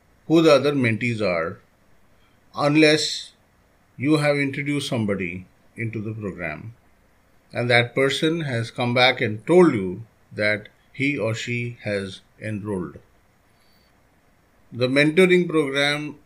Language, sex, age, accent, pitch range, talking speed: English, male, 50-69, Indian, 105-135 Hz, 110 wpm